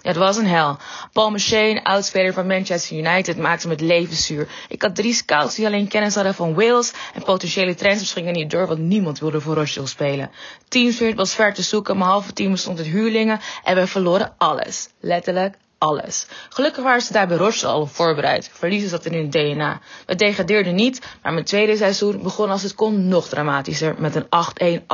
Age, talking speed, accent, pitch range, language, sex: 20-39, 200 wpm, Dutch, 170-215 Hz, Dutch, female